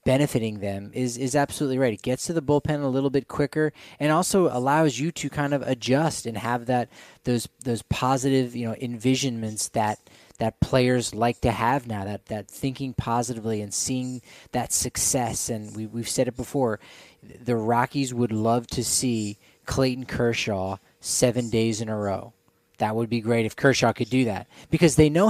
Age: 20-39